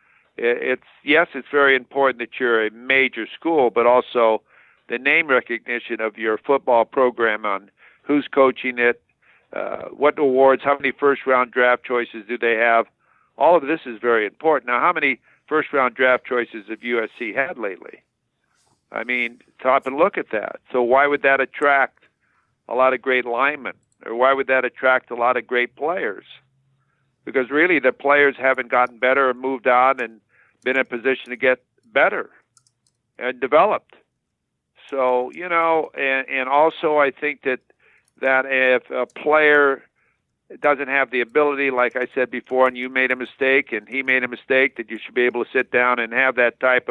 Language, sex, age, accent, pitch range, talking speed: English, male, 50-69, American, 125-140 Hz, 180 wpm